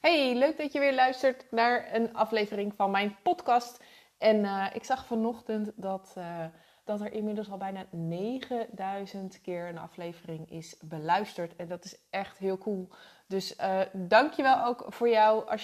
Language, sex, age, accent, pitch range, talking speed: Dutch, female, 20-39, Dutch, 180-225 Hz, 165 wpm